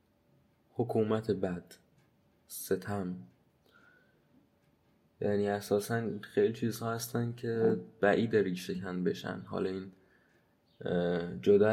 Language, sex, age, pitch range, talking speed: Persian, male, 20-39, 95-115 Hz, 80 wpm